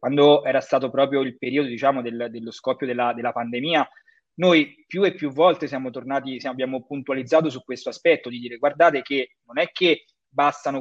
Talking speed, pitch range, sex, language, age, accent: 190 wpm, 130-170 Hz, male, Italian, 20-39, native